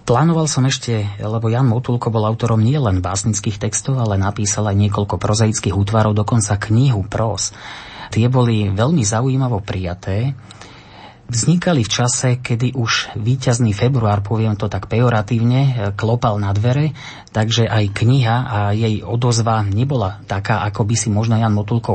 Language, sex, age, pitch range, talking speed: Slovak, male, 30-49, 105-120 Hz, 150 wpm